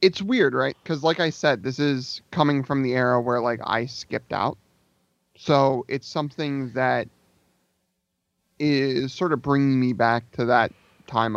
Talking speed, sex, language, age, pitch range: 165 wpm, male, English, 30-49, 120-140 Hz